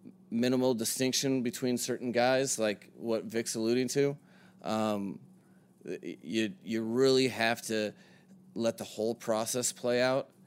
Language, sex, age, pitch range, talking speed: English, male, 30-49, 105-130 Hz, 125 wpm